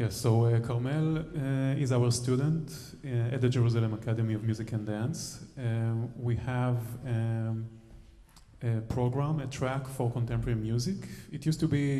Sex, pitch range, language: male, 115-135 Hz, English